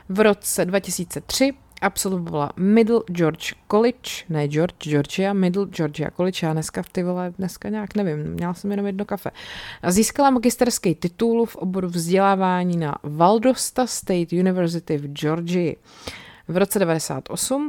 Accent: native